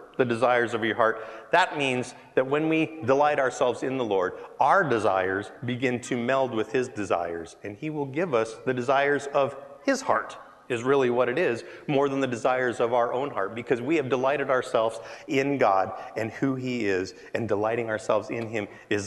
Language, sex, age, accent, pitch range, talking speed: English, male, 30-49, American, 125-155 Hz, 200 wpm